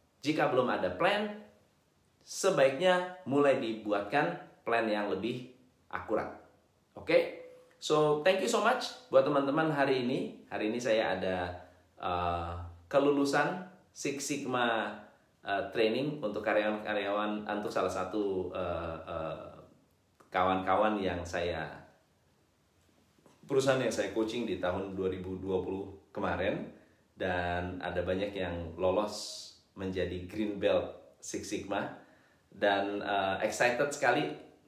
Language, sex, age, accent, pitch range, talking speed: Indonesian, male, 30-49, native, 95-140 Hz, 110 wpm